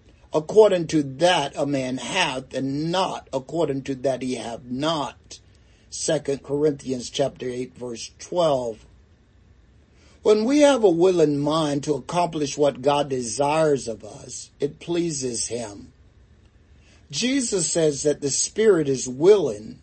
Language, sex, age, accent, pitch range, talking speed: English, male, 60-79, American, 115-180 Hz, 130 wpm